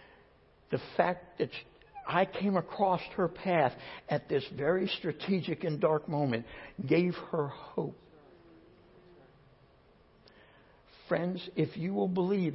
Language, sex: English, male